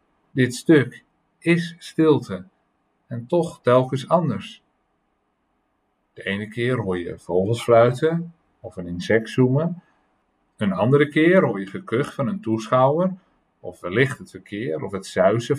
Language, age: Dutch, 50-69